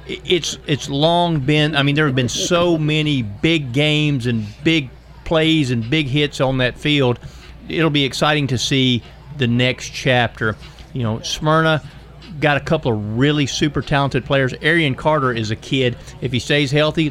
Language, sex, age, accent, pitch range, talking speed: English, male, 50-69, American, 125-160 Hz, 175 wpm